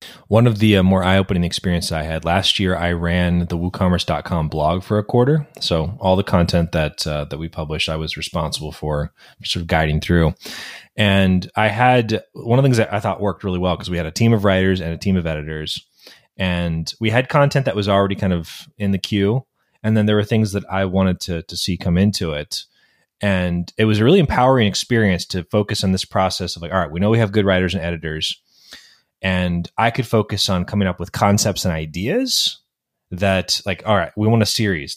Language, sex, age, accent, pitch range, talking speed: English, male, 20-39, American, 85-110 Hz, 220 wpm